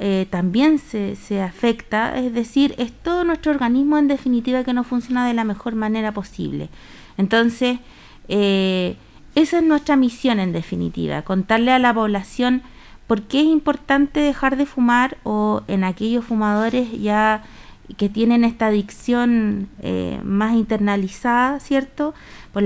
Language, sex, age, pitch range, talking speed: Spanish, female, 30-49, 210-260 Hz, 145 wpm